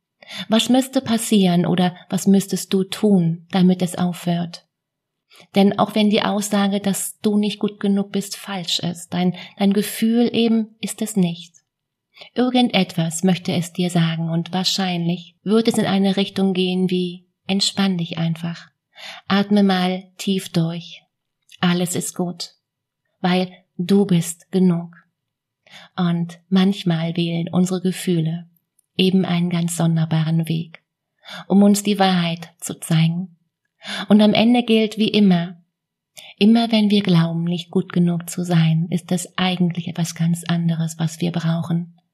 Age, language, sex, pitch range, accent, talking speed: 30-49, German, female, 170-195 Hz, German, 140 wpm